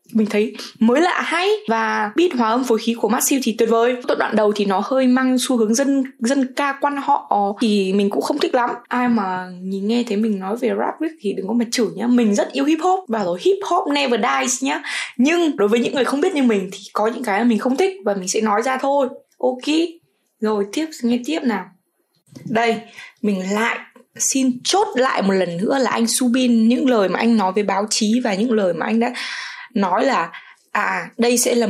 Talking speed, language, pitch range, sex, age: 235 wpm, Vietnamese, 210-270 Hz, female, 20-39